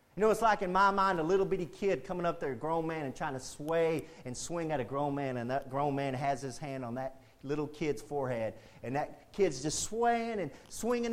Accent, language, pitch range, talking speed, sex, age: American, English, 130-195 Hz, 250 wpm, male, 40-59